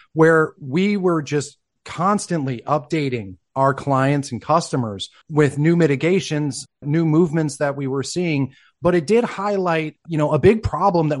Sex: male